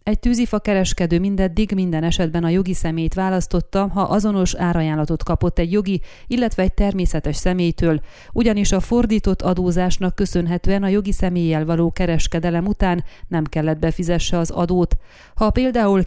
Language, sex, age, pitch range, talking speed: Hungarian, female, 30-49, 170-200 Hz, 140 wpm